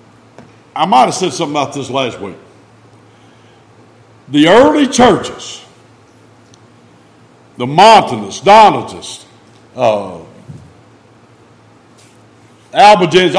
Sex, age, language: male, 60-79, English